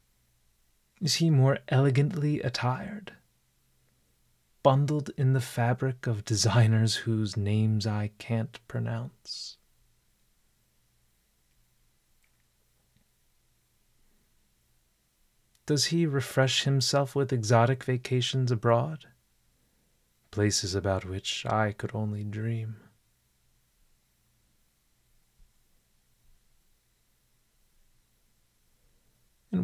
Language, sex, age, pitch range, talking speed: English, male, 30-49, 100-135 Hz, 65 wpm